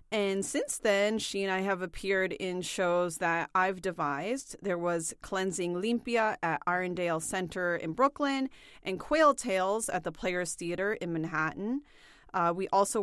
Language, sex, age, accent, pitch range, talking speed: English, female, 30-49, American, 180-225 Hz, 155 wpm